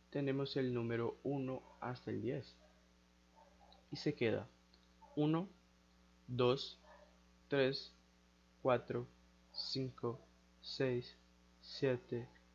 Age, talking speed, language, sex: 20-39, 80 wpm, English, male